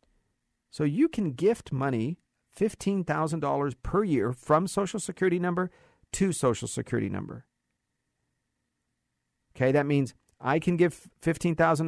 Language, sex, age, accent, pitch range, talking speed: English, male, 50-69, American, 120-160 Hz, 115 wpm